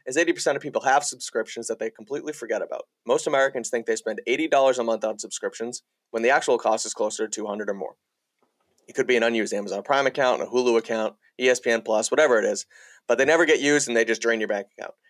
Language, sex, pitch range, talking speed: English, male, 110-145 Hz, 235 wpm